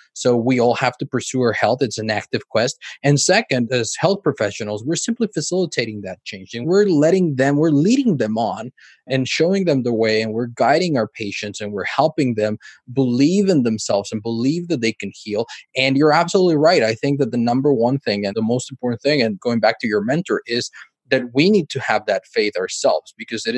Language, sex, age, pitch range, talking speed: English, male, 20-39, 110-150 Hz, 220 wpm